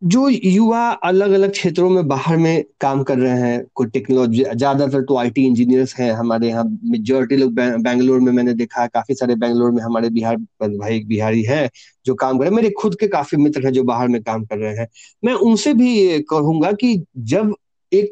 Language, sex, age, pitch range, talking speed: Hindi, male, 30-49, 125-180 Hz, 205 wpm